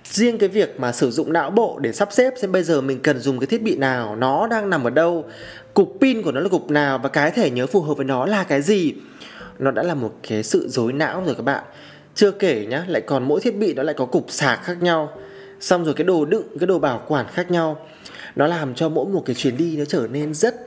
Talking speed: 270 wpm